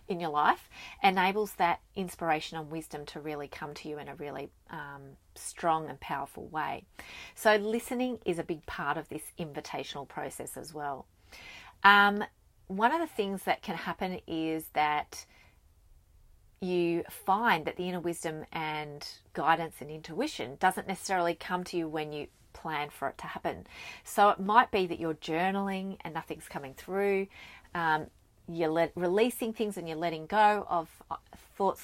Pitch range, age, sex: 155-195 Hz, 30-49, female